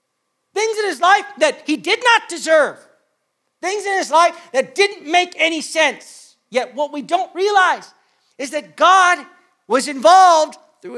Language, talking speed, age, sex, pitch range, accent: English, 160 wpm, 40-59, male, 250-325 Hz, American